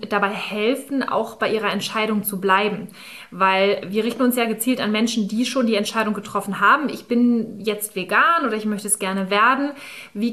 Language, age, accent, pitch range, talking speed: German, 20-39, German, 205-255 Hz, 190 wpm